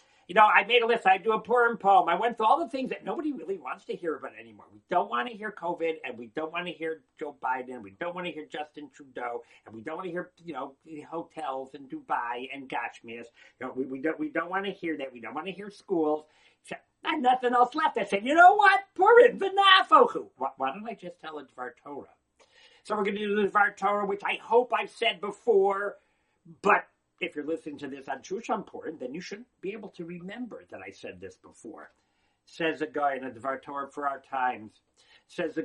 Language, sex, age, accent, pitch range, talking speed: English, male, 50-69, American, 145-220 Hz, 240 wpm